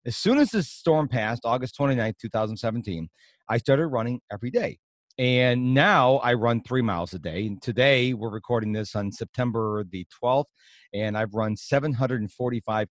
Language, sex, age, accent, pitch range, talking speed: English, male, 40-59, American, 115-140 Hz, 165 wpm